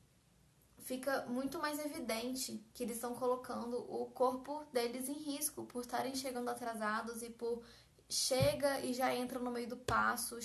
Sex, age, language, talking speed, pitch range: female, 10-29, Portuguese, 155 wpm, 230-265 Hz